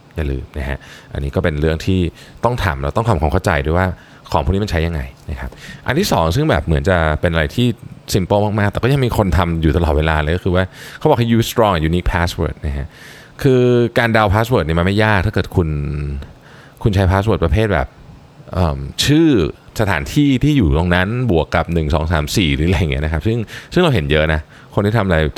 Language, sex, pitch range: Thai, male, 80-115 Hz